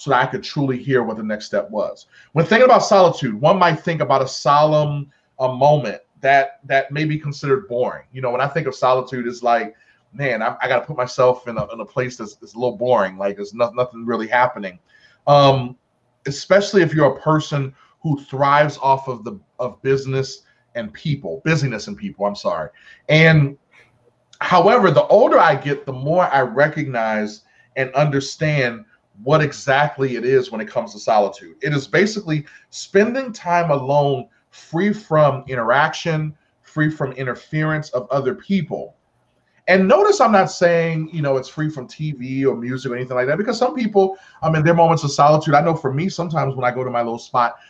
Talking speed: 190 wpm